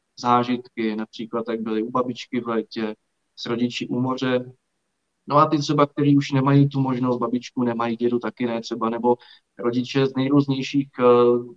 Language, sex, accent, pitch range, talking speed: Czech, male, native, 120-140 Hz, 160 wpm